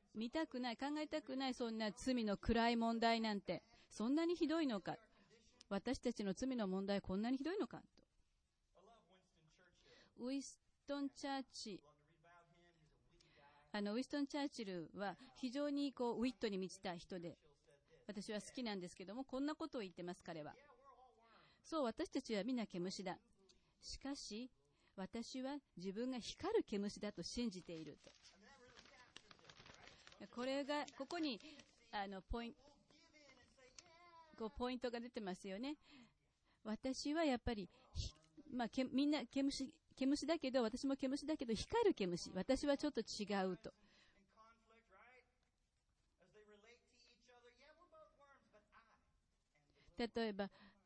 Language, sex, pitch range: English, female, 195-275 Hz